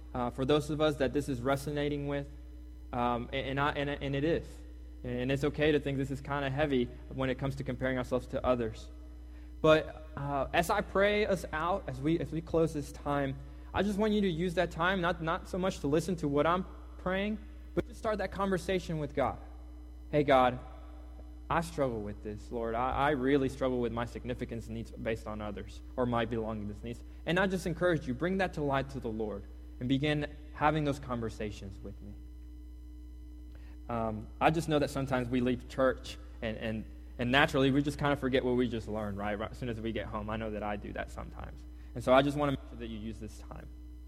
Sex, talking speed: male, 225 wpm